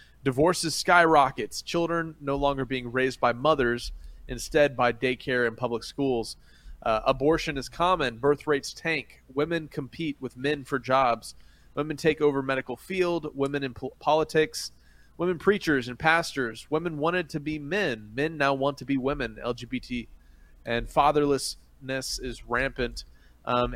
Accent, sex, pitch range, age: American, male, 120-145 Hz, 30-49